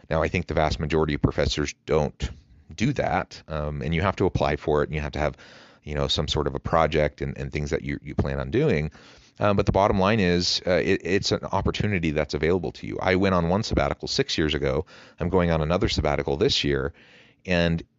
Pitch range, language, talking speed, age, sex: 75-95 Hz, English, 235 wpm, 30-49, male